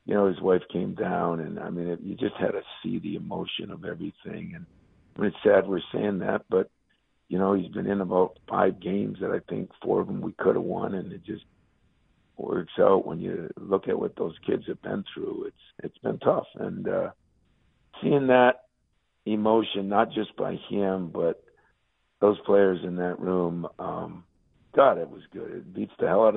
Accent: American